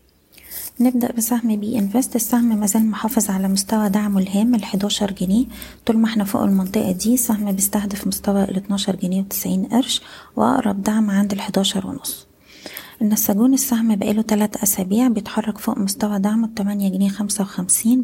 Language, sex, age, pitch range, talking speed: Arabic, female, 20-39, 195-225 Hz, 145 wpm